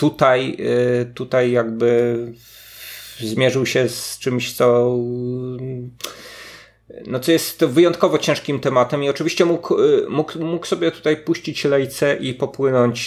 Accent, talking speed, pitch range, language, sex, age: native, 115 wpm, 110-130 Hz, Polish, male, 30-49